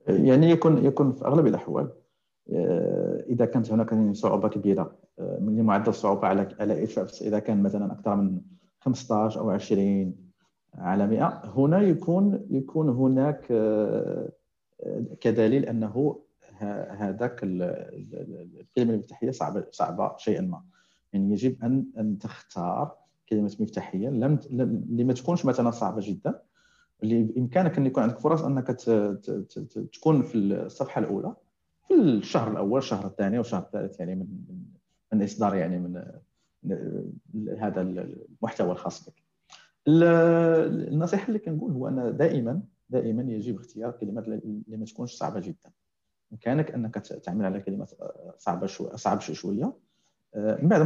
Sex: male